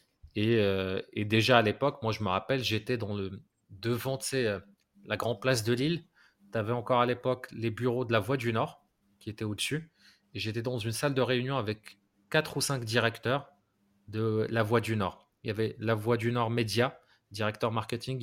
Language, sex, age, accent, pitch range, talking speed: French, male, 30-49, French, 105-125 Hz, 205 wpm